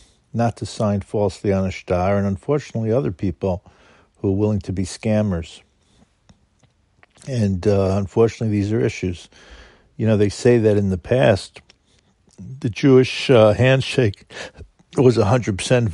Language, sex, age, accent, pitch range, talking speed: English, male, 50-69, American, 95-110 Hz, 140 wpm